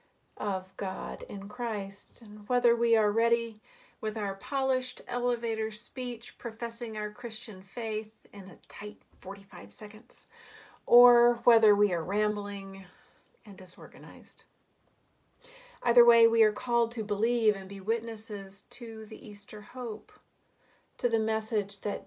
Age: 40-59